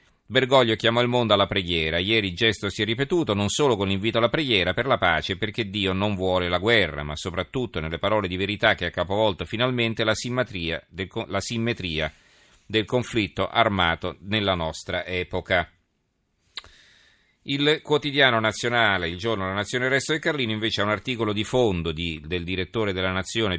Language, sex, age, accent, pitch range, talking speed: Italian, male, 40-59, native, 90-110 Hz, 180 wpm